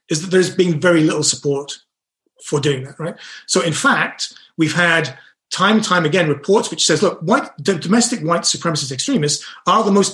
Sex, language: male, English